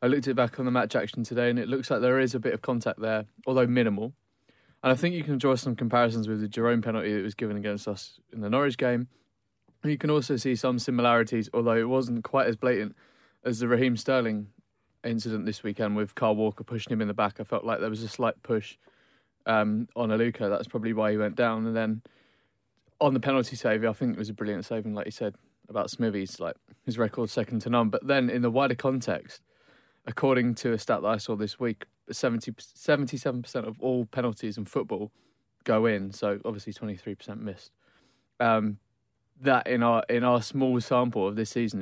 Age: 20-39